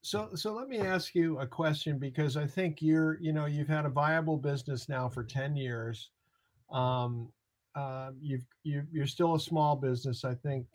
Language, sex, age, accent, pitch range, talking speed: English, male, 50-69, American, 130-160 Hz, 190 wpm